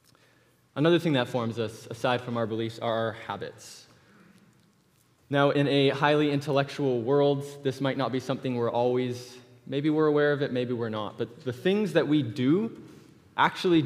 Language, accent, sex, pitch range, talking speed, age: English, American, male, 110-135 Hz, 175 wpm, 20-39